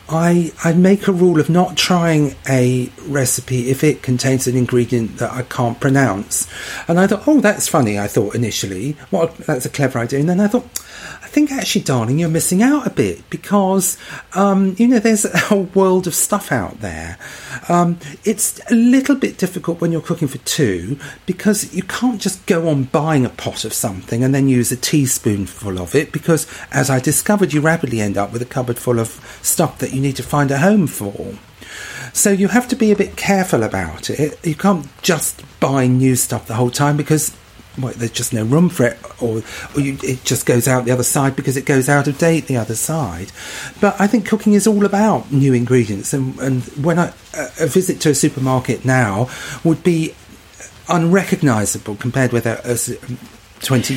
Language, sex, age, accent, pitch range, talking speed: English, male, 40-59, British, 125-180 Hz, 200 wpm